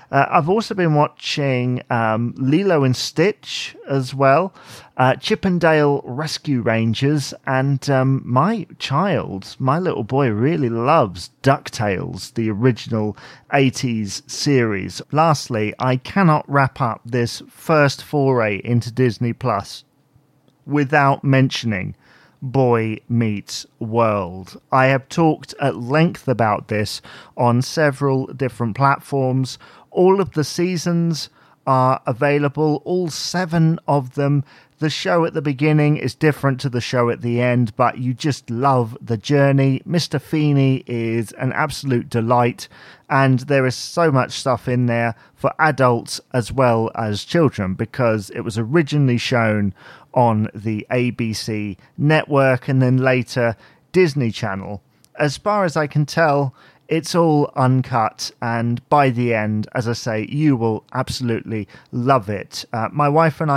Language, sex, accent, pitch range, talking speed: English, male, British, 120-145 Hz, 135 wpm